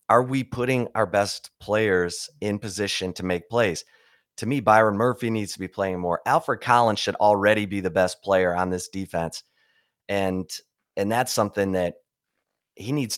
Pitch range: 90-110 Hz